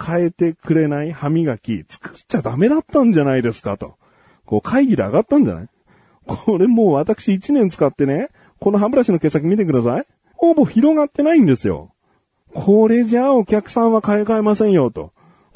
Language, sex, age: Japanese, male, 40-59